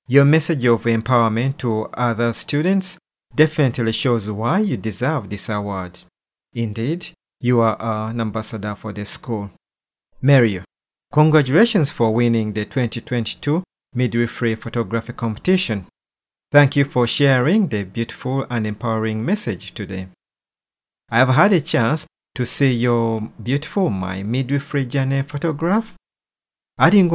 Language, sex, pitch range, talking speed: English, male, 110-140 Hz, 120 wpm